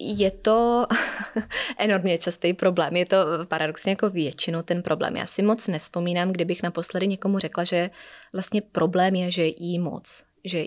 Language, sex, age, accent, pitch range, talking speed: Czech, female, 20-39, native, 175-200 Hz, 160 wpm